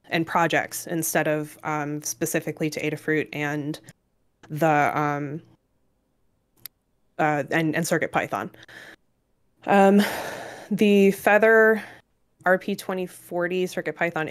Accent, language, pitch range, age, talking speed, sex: American, English, 150-180 Hz, 20-39, 85 wpm, female